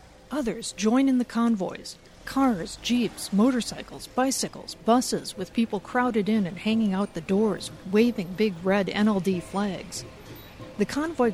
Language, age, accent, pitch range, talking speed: English, 50-69, American, 180-225 Hz, 140 wpm